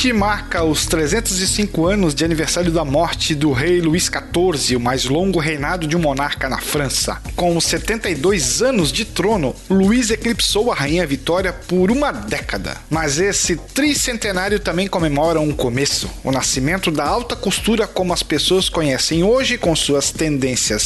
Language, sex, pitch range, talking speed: Portuguese, male, 155-210 Hz, 160 wpm